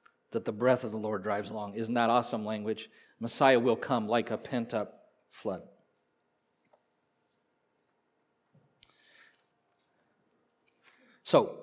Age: 40-59